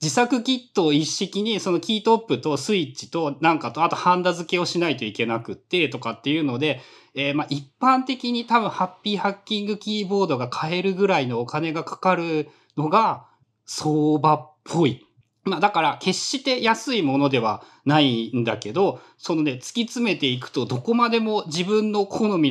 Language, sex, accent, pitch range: Japanese, male, native, 130-210 Hz